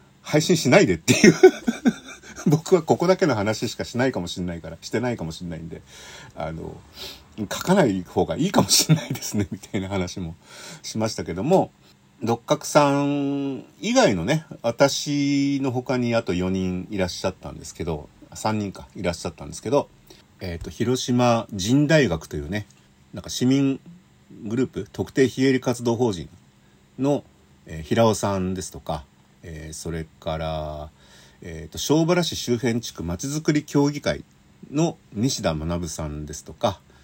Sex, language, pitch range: male, Japanese, 85-140 Hz